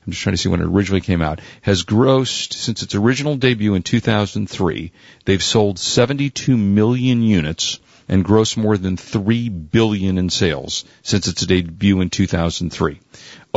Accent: American